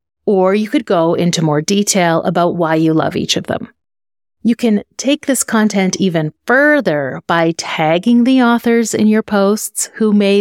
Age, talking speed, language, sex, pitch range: 30-49, 175 wpm, English, female, 180-225 Hz